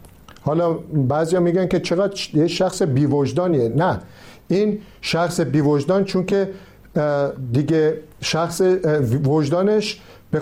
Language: Persian